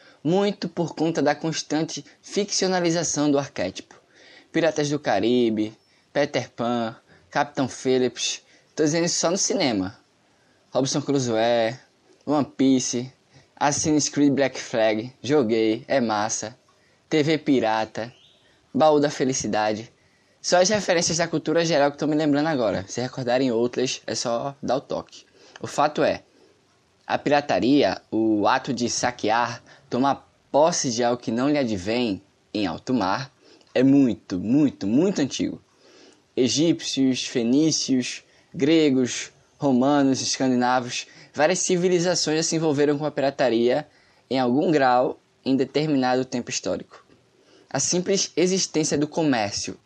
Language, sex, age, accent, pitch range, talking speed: Portuguese, male, 10-29, Brazilian, 125-160 Hz, 130 wpm